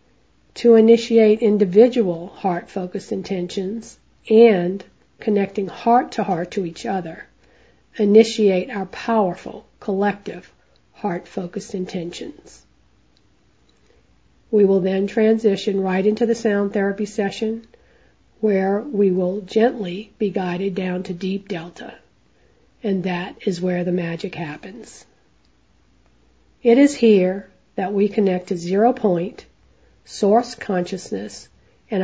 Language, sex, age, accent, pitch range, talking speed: English, female, 40-59, American, 180-210 Hz, 105 wpm